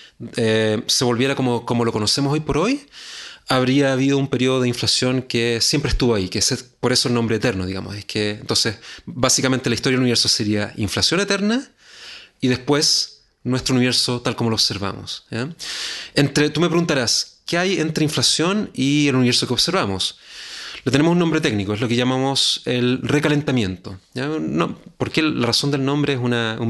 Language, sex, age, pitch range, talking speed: Spanish, male, 30-49, 120-150 Hz, 185 wpm